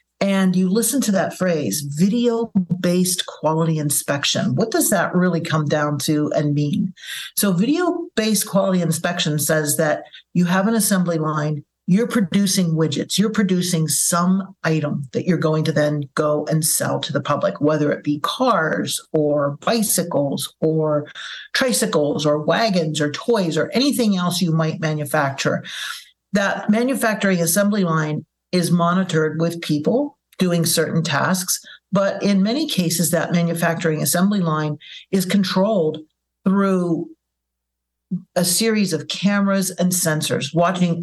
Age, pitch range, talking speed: 50-69, 155-195 Hz, 135 wpm